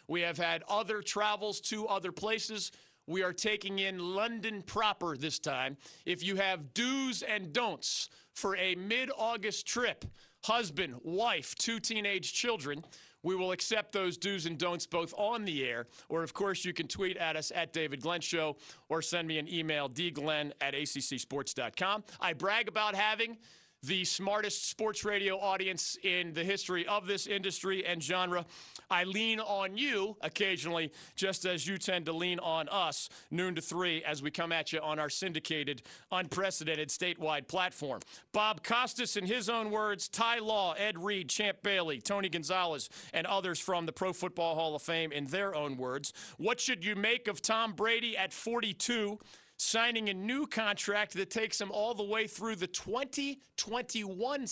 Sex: male